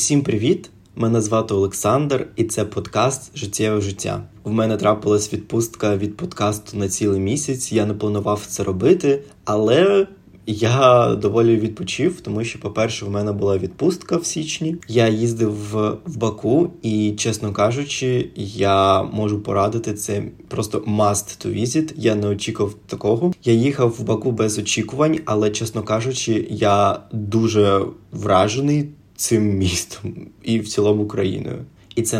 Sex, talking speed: male, 140 wpm